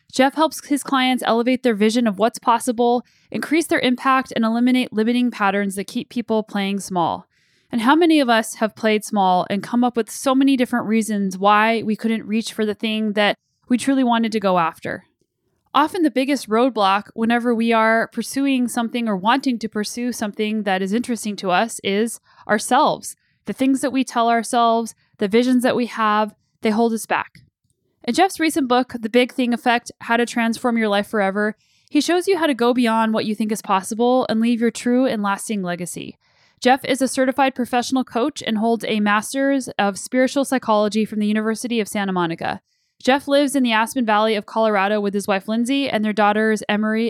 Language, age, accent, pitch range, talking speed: English, 10-29, American, 215-255 Hz, 200 wpm